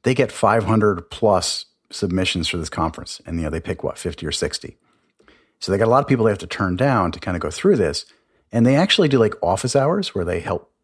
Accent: American